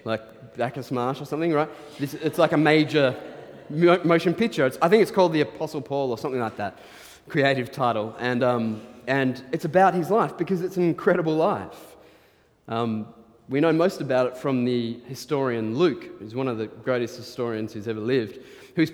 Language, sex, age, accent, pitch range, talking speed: English, male, 20-39, Australian, 120-155 Hz, 175 wpm